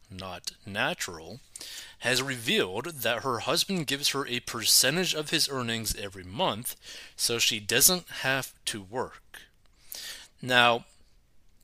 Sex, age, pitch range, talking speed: male, 30-49, 105-140 Hz, 120 wpm